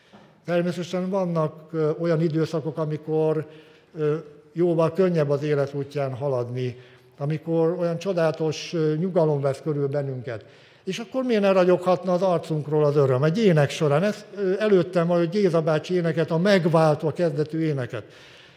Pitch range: 150-185 Hz